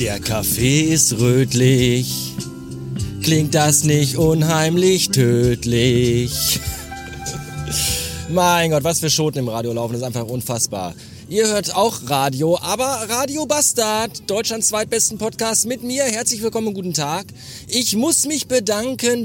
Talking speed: 130 wpm